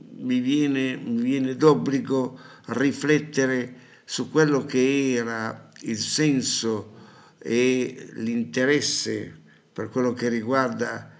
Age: 60-79